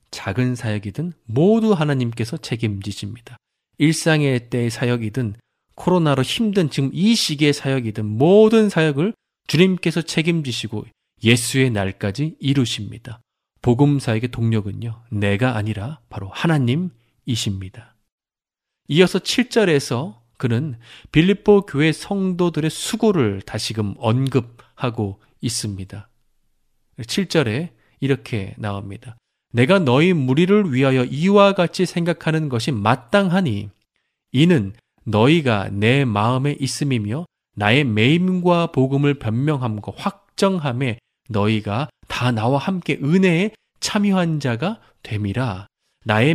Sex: male